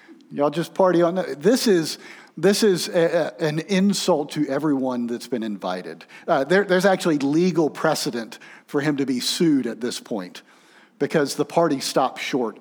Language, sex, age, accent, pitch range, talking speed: English, male, 50-69, American, 120-160 Hz, 170 wpm